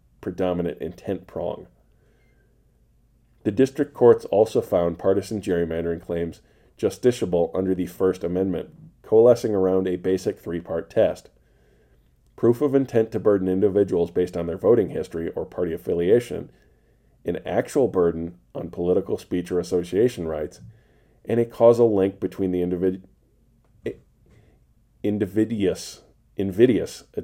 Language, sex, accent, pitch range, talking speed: English, male, American, 85-100 Hz, 115 wpm